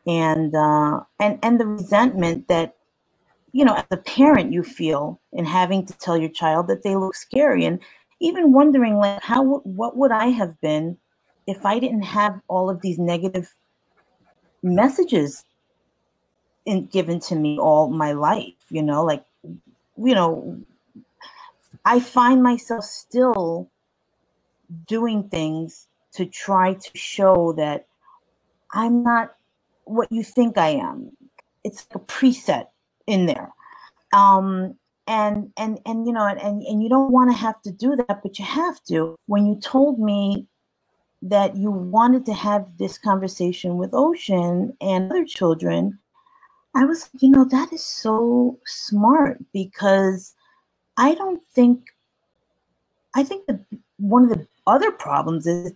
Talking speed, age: 145 wpm, 40-59